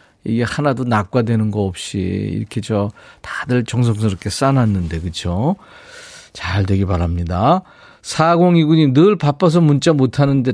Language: Korean